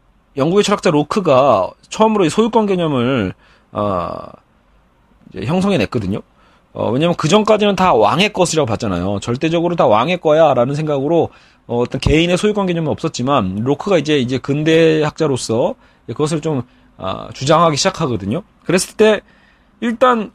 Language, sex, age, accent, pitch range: Korean, male, 30-49, native, 130-190 Hz